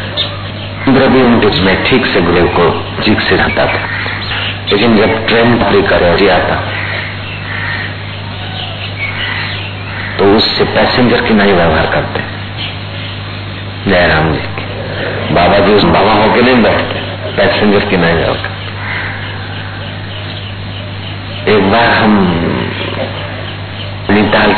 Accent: native